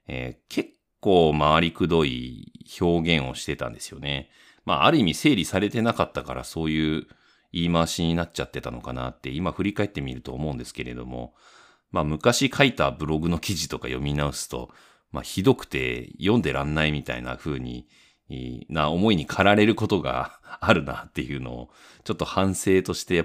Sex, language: male, Japanese